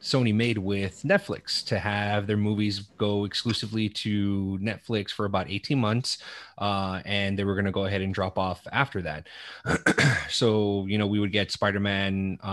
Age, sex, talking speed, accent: 20-39, male, 170 wpm, American